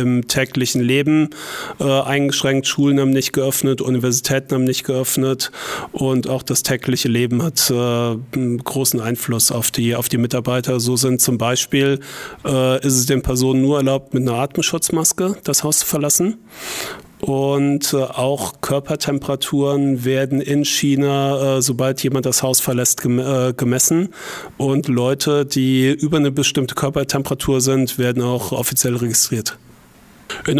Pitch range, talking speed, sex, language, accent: 125-140 Hz, 145 wpm, male, German, German